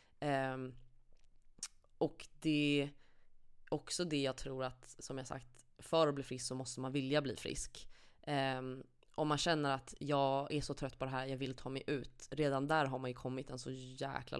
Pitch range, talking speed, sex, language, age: 130-150 Hz, 200 wpm, female, Swedish, 20-39